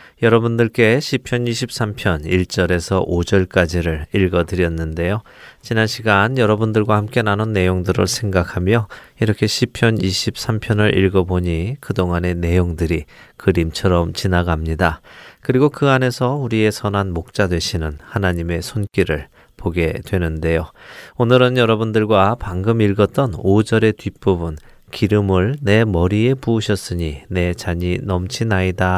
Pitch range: 90-115 Hz